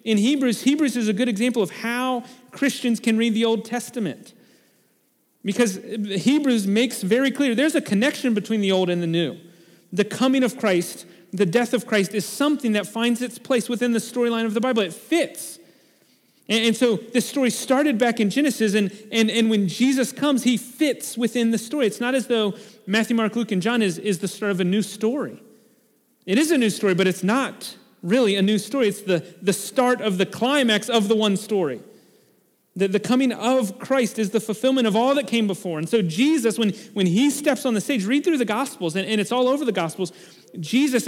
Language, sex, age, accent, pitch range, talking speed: English, male, 40-59, American, 210-250 Hz, 210 wpm